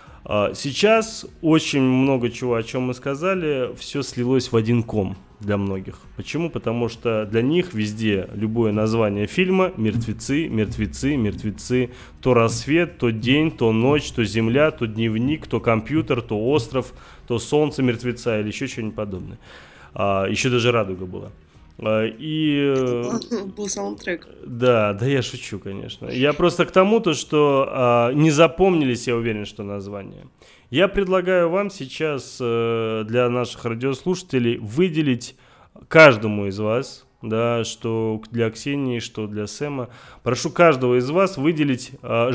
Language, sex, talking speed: Russian, male, 130 wpm